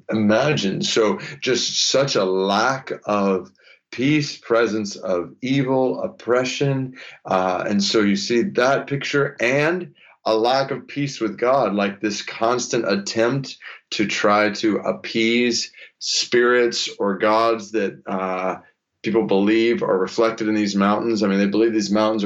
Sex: male